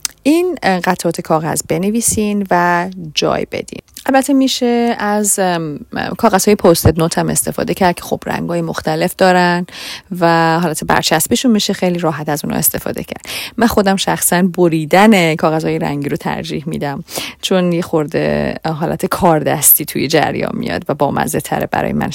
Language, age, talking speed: Persian, 30-49, 150 wpm